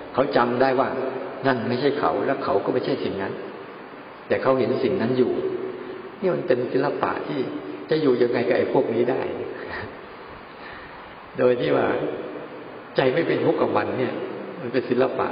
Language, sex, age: Thai, male, 60-79